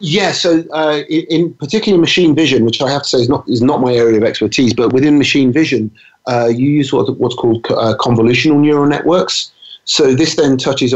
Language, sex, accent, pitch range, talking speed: English, male, British, 105-135 Hz, 225 wpm